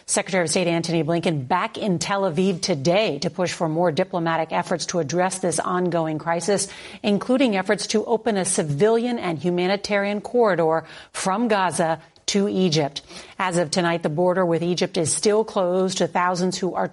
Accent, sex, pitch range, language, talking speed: American, female, 170-200 Hz, English, 170 wpm